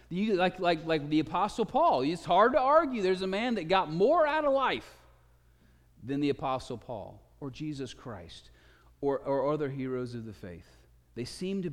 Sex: male